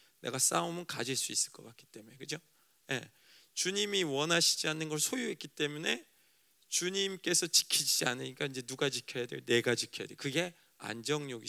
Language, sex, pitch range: Korean, male, 145-200 Hz